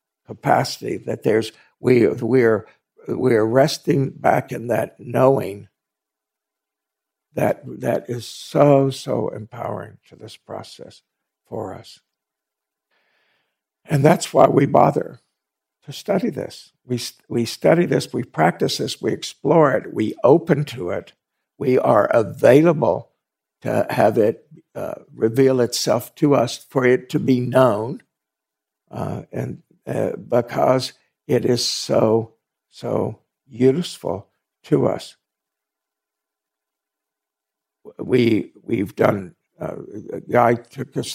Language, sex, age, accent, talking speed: English, male, 60-79, American, 120 wpm